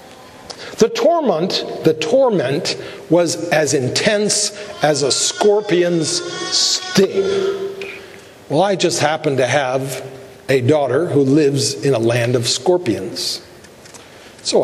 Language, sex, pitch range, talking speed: English, male, 135-195 Hz, 110 wpm